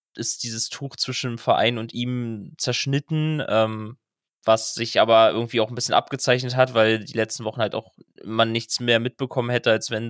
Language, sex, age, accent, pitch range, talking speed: German, male, 20-39, German, 110-125 Hz, 190 wpm